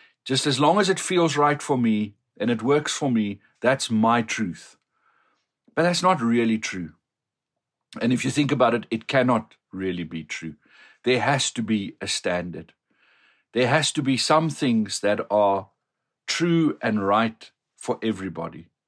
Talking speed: 165 wpm